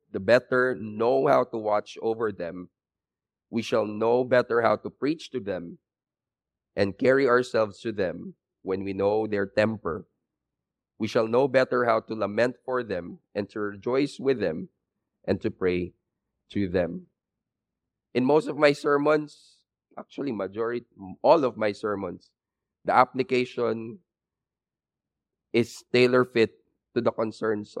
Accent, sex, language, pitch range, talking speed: Filipino, male, English, 100-120 Hz, 140 wpm